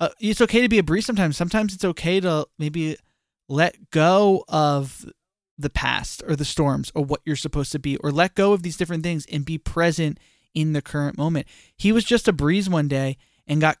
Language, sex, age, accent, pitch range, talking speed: English, male, 20-39, American, 145-185 Hz, 215 wpm